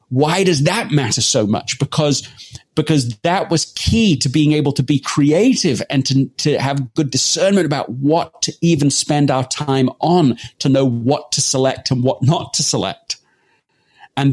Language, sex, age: English, male, 40-59